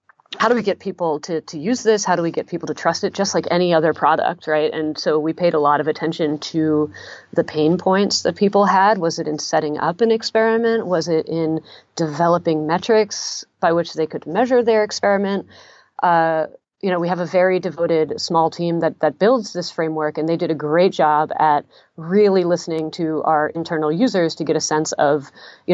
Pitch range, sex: 155-185 Hz, female